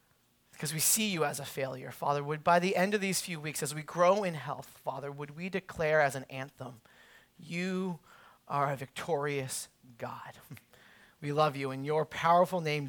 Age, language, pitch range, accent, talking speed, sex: 30-49, English, 190-255 Hz, American, 185 wpm, male